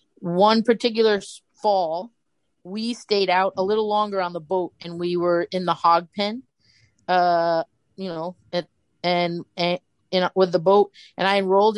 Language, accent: English, American